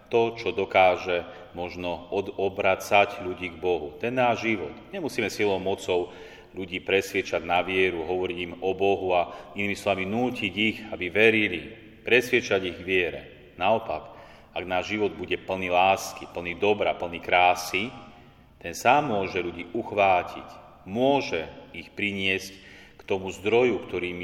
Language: Slovak